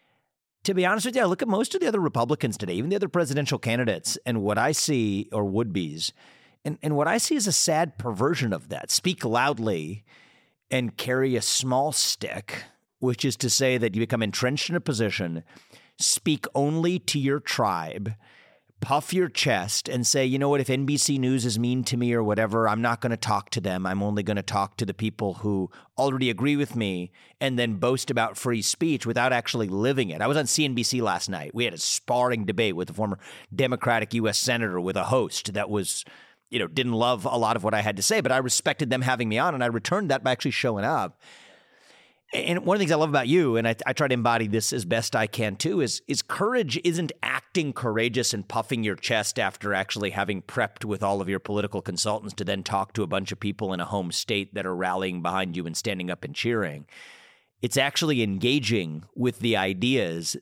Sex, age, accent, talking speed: male, 40-59, American, 220 wpm